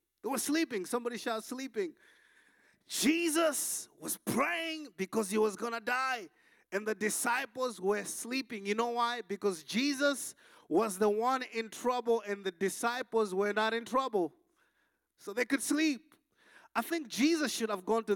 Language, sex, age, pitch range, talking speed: English, male, 30-49, 195-300 Hz, 160 wpm